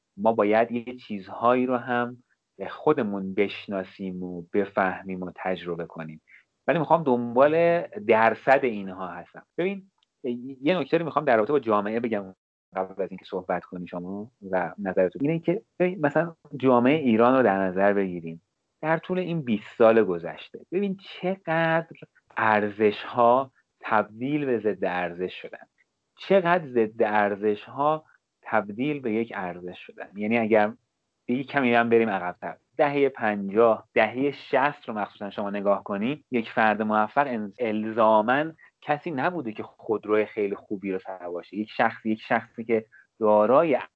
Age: 30-49